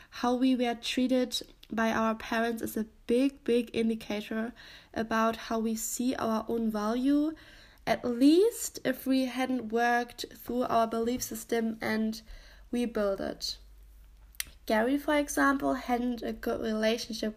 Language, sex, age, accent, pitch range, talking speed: English, female, 10-29, German, 220-255 Hz, 135 wpm